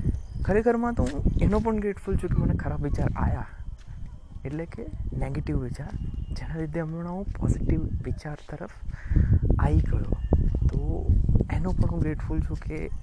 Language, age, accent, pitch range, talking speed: Gujarati, 20-39, native, 90-150 Hz, 105 wpm